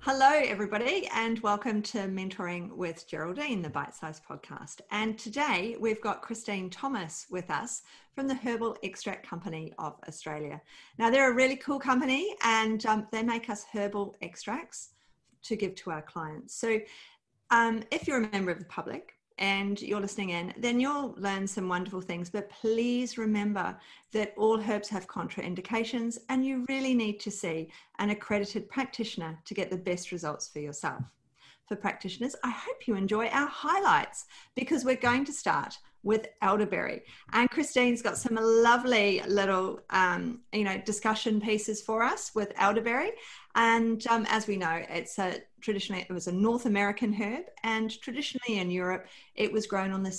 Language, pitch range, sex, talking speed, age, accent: English, 185-235 Hz, female, 170 wpm, 40-59, Australian